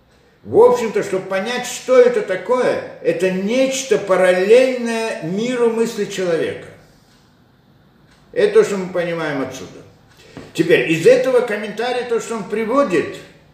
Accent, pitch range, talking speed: native, 155-260 Hz, 120 wpm